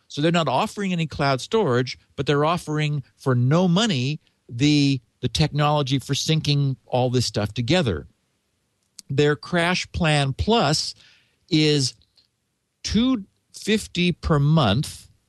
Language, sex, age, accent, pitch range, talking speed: English, male, 50-69, American, 125-160 Hz, 120 wpm